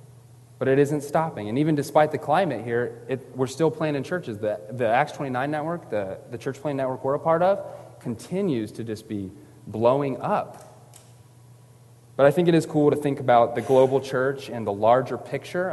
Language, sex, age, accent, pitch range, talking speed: English, male, 30-49, American, 120-145 Hz, 200 wpm